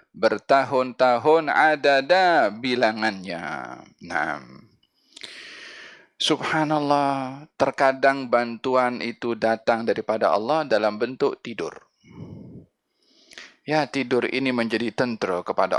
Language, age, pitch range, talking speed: Malay, 20-39, 100-135 Hz, 75 wpm